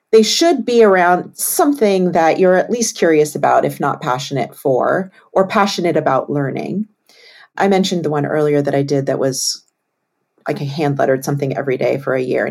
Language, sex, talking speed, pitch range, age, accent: English, female, 185 wpm, 140-185 Hz, 40-59, American